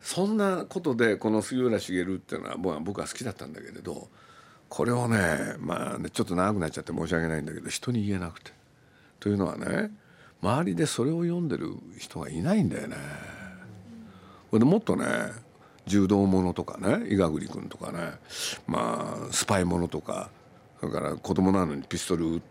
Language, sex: Japanese, male